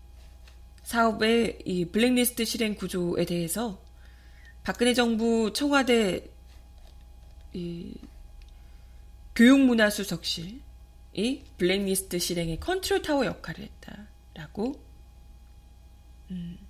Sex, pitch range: female, 165-250 Hz